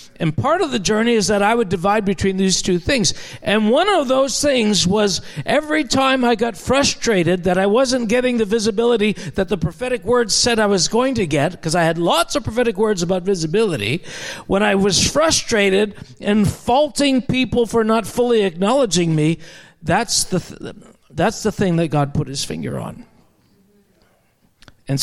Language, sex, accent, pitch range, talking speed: English, male, American, 165-230 Hz, 175 wpm